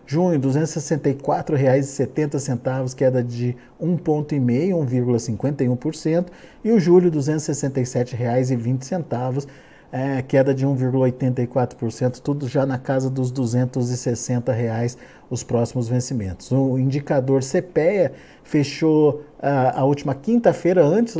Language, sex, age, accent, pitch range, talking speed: Portuguese, male, 50-69, Brazilian, 125-150 Hz, 100 wpm